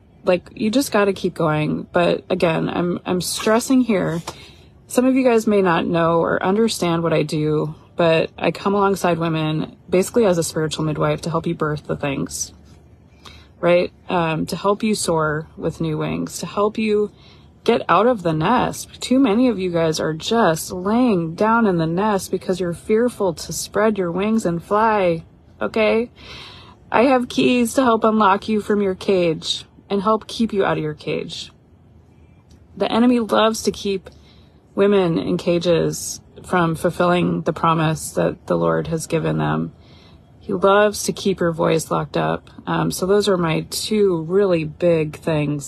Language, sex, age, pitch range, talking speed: English, female, 20-39, 155-205 Hz, 175 wpm